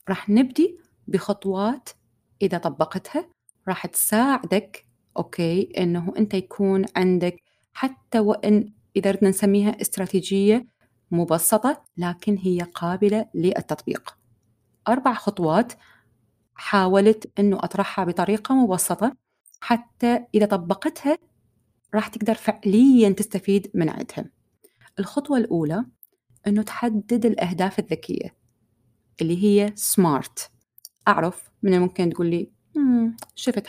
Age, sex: 30-49, female